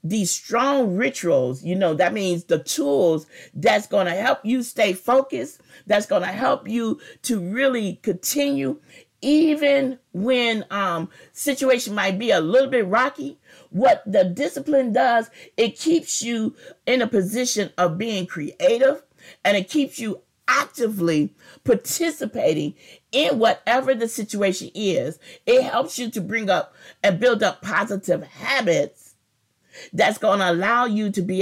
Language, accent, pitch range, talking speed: English, American, 180-240 Hz, 145 wpm